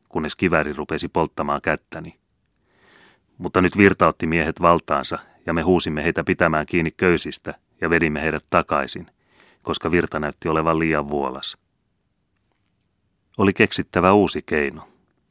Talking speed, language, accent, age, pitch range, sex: 125 wpm, Finnish, native, 30-49, 75-90 Hz, male